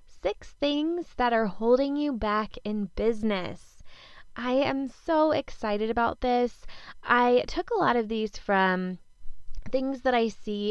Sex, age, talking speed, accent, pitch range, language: female, 20-39, 145 wpm, American, 195-255 Hz, English